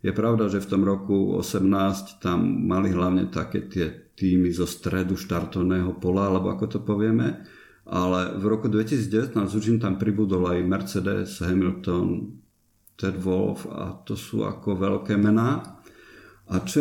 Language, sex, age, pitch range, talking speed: Slovak, male, 50-69, 95-110 Hz, 150 wpm